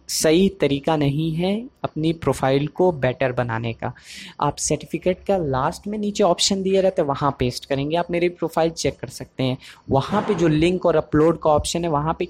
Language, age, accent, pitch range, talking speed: Hindi, 20-39, native, 135-170 Hz, 200 wpm